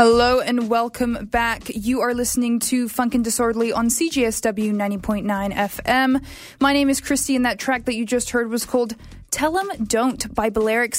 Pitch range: 220-255 Hz